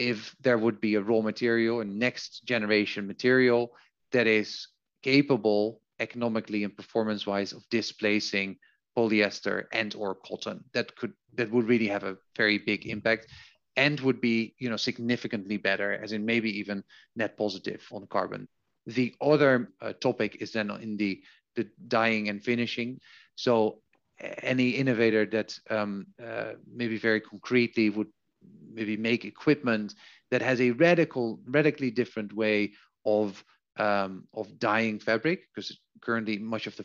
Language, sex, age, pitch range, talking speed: English, male, 40-59, 105-120 Hz, 145 wpm